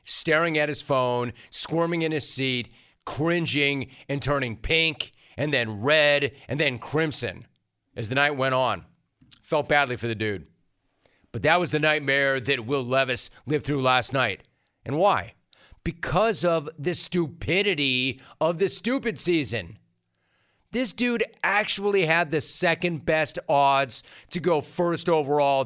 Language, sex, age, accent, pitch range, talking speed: English, male, 40-59, American, 135-170 Hz, 145 wpm